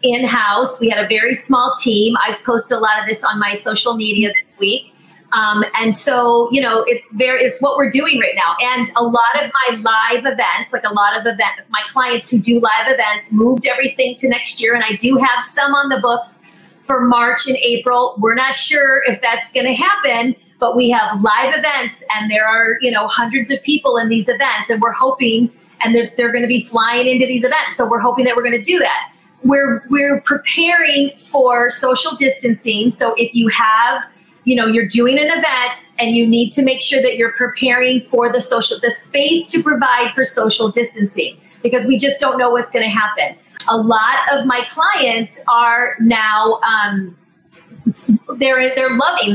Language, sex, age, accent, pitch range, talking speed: English, female, 30-49, American, 225-265 Hz, 205 wpm